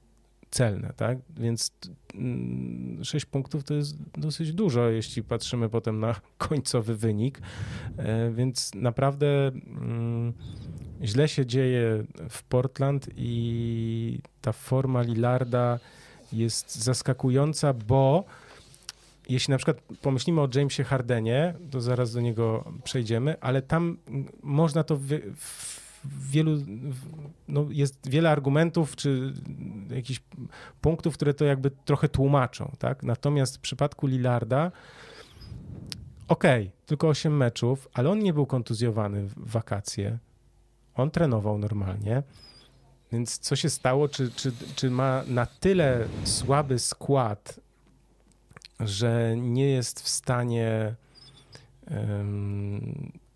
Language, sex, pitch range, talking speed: Polish, male, 115-145 Hz, 110 wpm